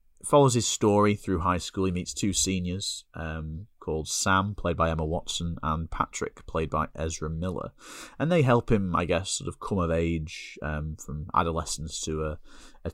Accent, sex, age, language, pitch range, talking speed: British, male, 30-49, English, 80-95 Hz, 185 wpm